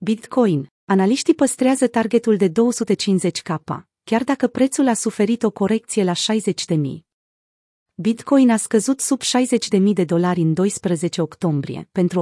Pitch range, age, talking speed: 180-230 Hz, 30-49, 130 wpm